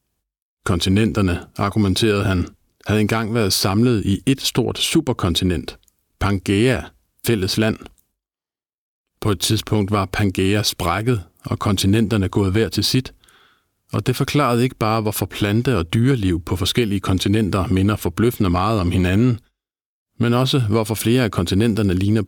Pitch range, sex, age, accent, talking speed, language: 95-120 Hz, male, 50-69, native, 135 wpm, Danish